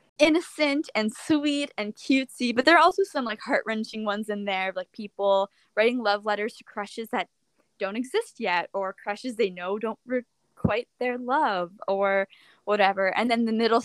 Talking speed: 175 wpm